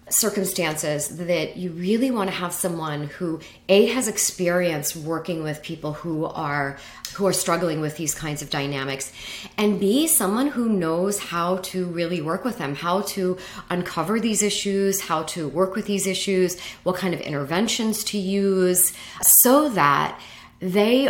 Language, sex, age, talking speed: English, female, 40-59, 160 wpm